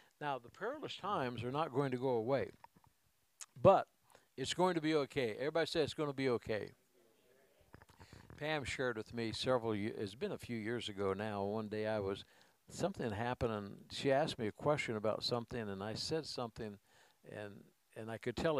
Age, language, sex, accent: 60-79, English, male, American